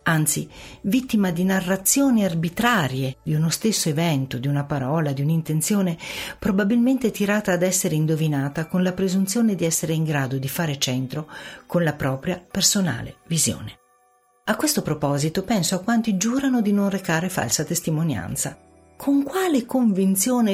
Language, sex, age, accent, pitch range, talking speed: Italian, female, 50-69, native, 140-190 Hz, 145 wpm